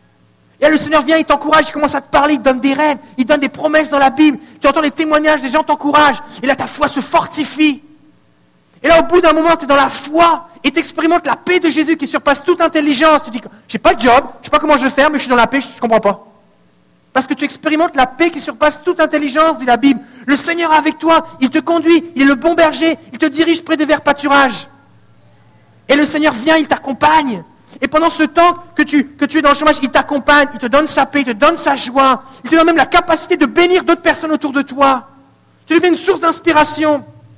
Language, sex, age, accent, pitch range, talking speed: French, male, 50-69, French, 235-310 Hz, 265 wpm